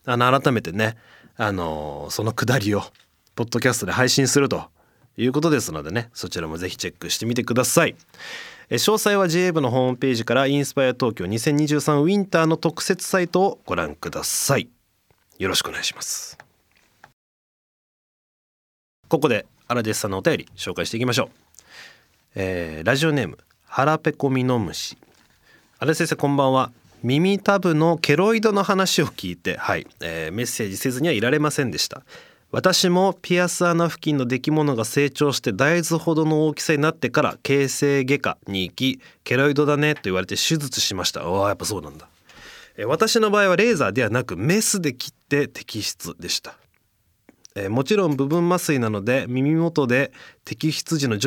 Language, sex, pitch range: Japanese, male, 110-160 Hz